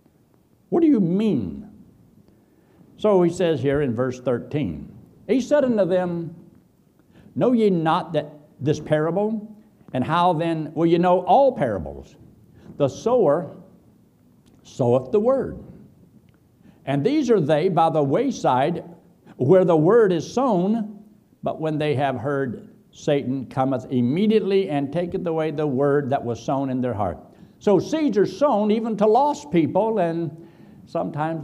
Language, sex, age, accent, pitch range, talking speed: English, male, 60-79, American, 130-180 Hz, 145 wpm